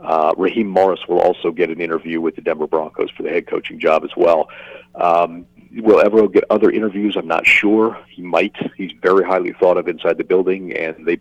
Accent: American